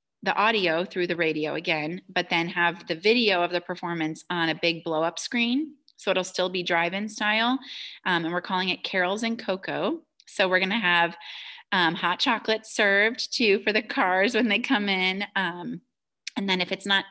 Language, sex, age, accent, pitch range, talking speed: English, female, 30-49, American, 170-215 Hz, 205 wpm